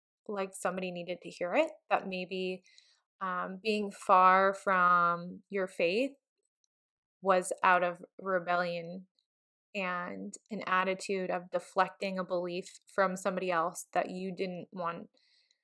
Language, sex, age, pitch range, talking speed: English, female, 20-39, 185-235 Hz, 125 wpm